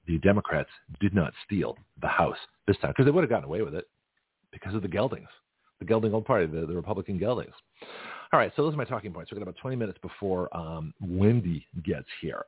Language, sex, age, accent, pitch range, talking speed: English, male, 40-59, American, 85-105 Hz, 225 wpm